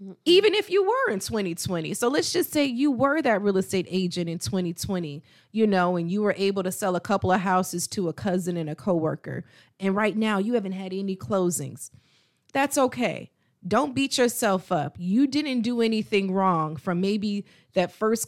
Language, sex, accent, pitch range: English, female, American, 175-215 Hz